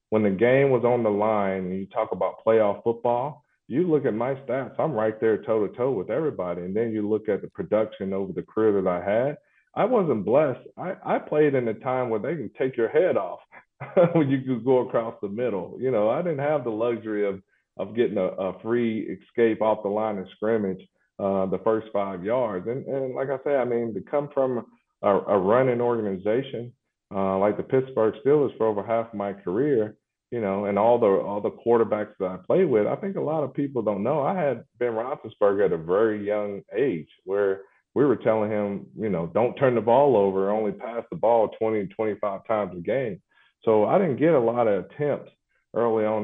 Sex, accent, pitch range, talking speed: male, American, 100-120 Hz, 220 wpm